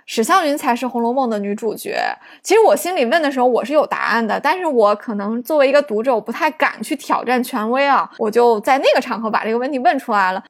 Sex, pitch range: female, 225-290 Hz